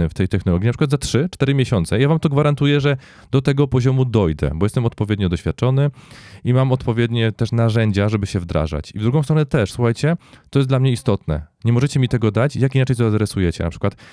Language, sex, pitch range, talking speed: Polish, male, 95-130 Hz, 215 wpm